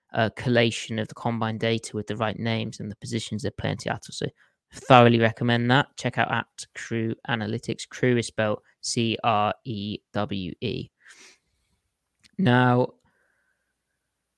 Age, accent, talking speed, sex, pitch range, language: 20-39, British, 125 wpm, male, 115-140 Hz, English